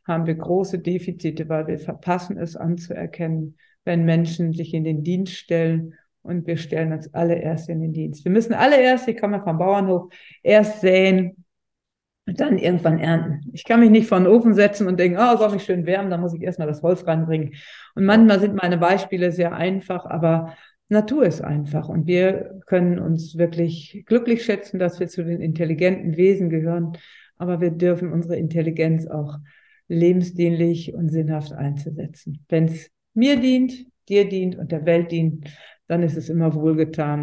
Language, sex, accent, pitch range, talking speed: German, female, German, 160-185 Hz, 180 wpm